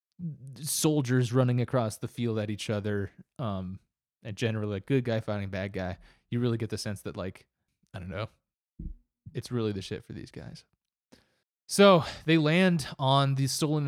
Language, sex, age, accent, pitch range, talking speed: English, male, 20-39, American, 105-130 Hz, 175 wpm